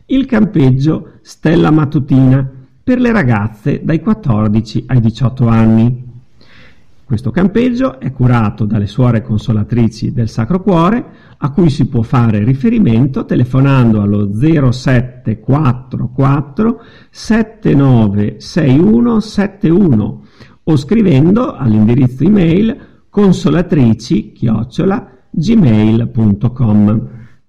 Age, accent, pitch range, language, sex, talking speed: 50-69, native, 115-170 Hz, Italian, male, 80 wpm